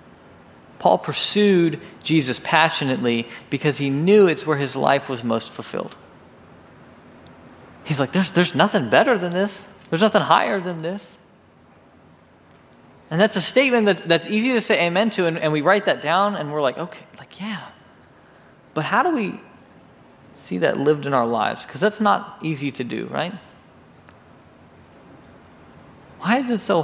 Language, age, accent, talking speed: English, 20-39, American, 160 wpm